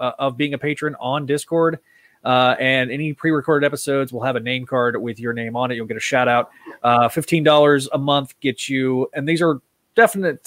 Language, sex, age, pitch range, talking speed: English, male, 20-39, 120-150 Hz, 210 wpm